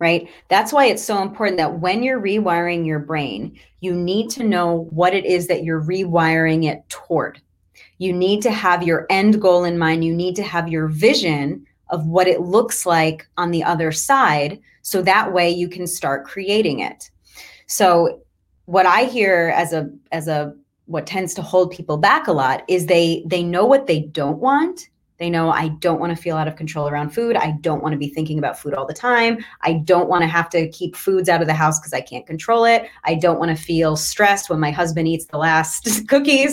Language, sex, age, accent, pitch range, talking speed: English, female, 30-49, American, 160-195 Hz, 220 wpm